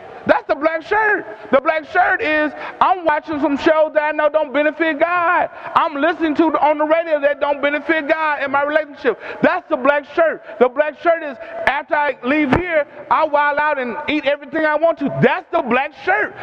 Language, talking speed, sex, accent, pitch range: English, 205 wpm, male, American, 260-335 Hz